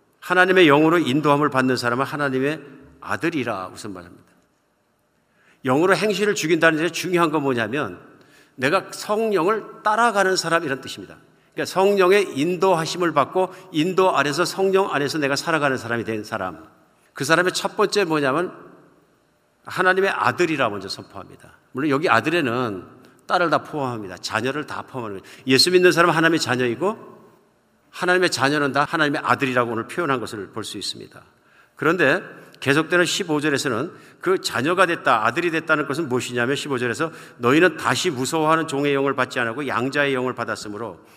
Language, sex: Korean, male